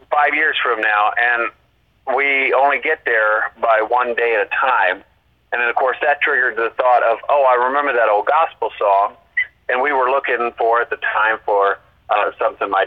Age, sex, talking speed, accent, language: 30-49, male, 200 wpm, American, English